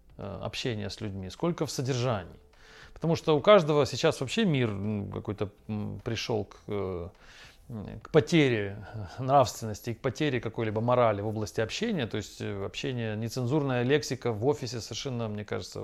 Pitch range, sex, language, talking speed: 110-155 Hz, male, English, 140 wpm